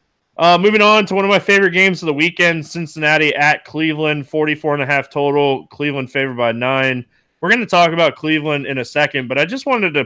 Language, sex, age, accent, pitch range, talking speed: English, male, 20-39, American, 125-165 Hz, 225 wpm